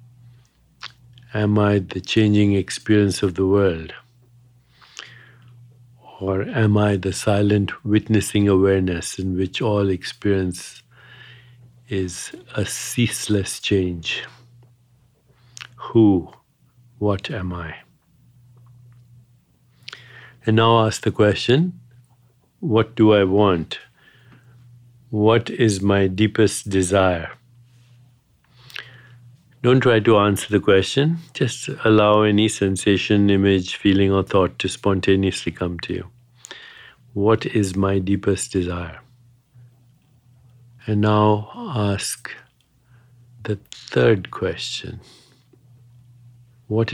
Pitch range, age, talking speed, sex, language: 100-120 Hz, 50-69, 90 wpm, male, English